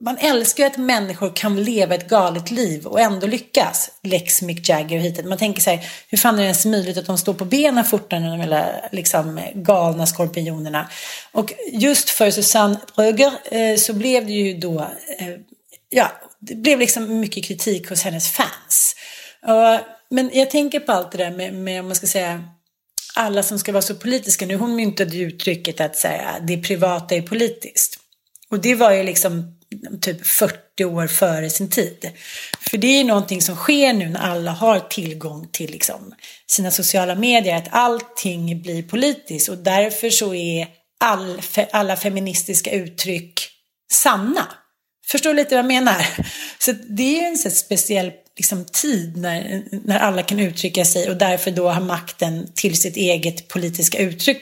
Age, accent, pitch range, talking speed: 30-49, Swedish, 175-225 Hz, 175 wpm